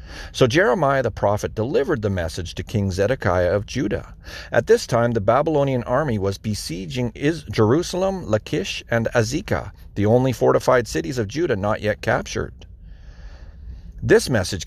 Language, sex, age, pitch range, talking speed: English, male, 40-59, 95-135 Hz, 145 wpm